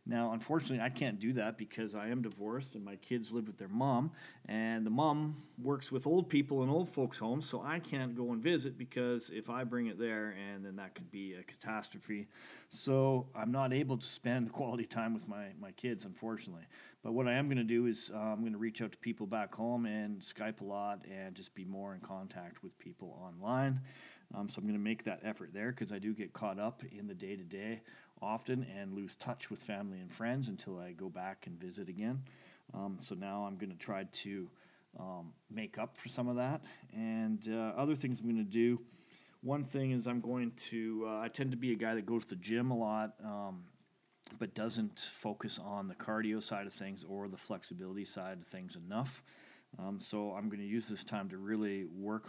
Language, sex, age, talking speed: English, male, 40-59, 225 wpm